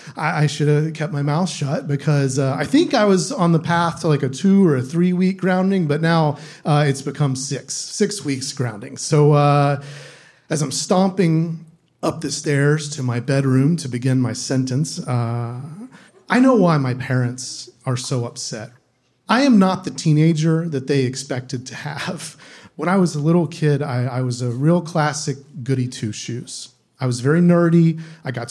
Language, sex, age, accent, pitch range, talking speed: English, male, 40-59, American, 130-175 Hz, 185 wpm